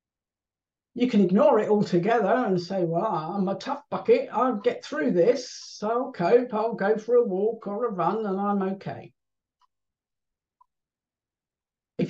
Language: English